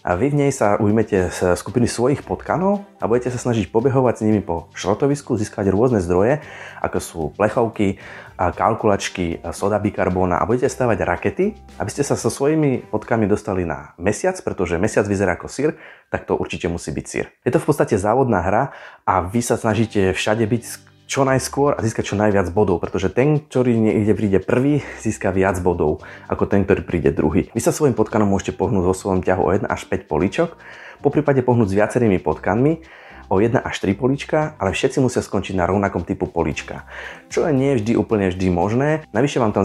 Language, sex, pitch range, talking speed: Slovak, male, 95-125 Hz, 195 wpm